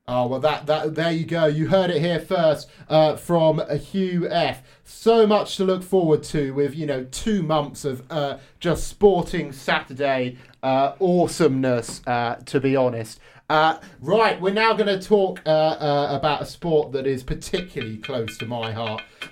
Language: English